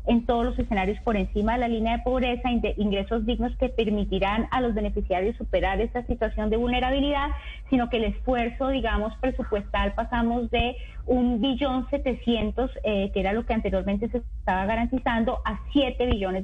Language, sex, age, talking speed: Spanish, female, 30-49, 160 wpm